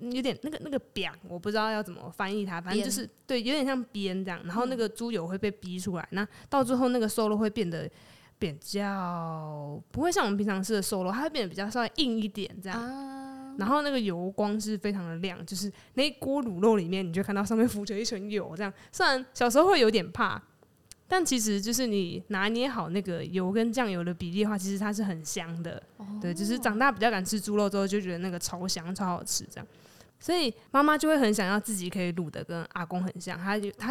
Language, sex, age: Chinese, female, 20-39